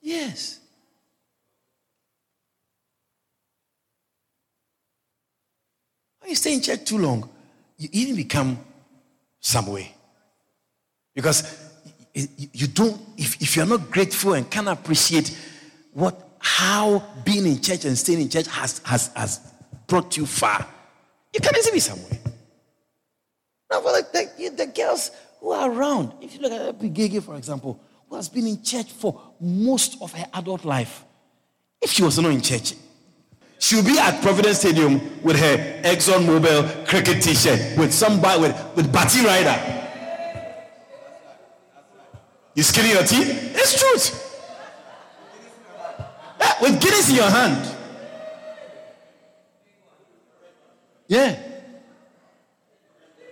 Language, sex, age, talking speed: English, male, 60-79, 120 wpm